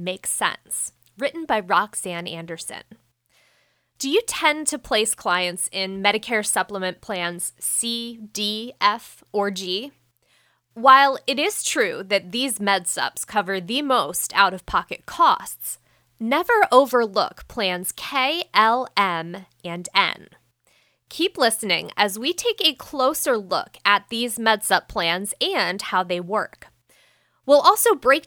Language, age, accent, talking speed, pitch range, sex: English, 20-39, American, 125 wpm, 190-270 Hz, female